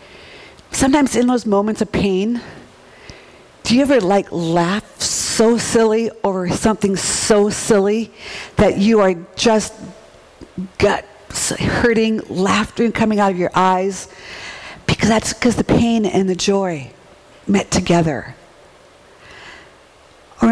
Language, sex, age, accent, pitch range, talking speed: English, female, 50-69, American, 175-220 Hz, 115 wpm